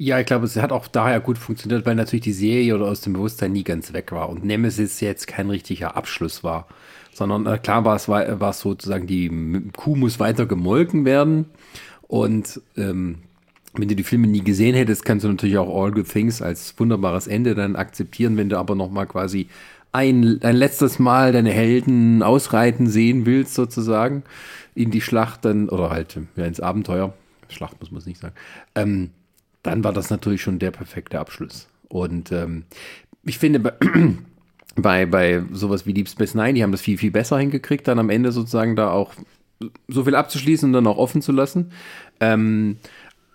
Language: German